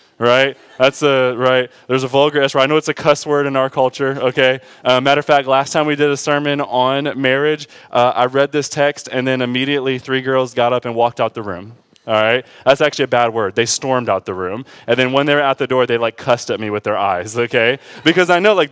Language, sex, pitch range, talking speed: English, male, 130-180 Hz, 255 wpm